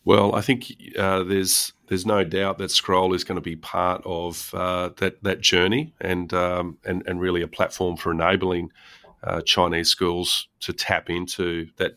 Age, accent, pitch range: 40-59, Australian, 85-95 Hz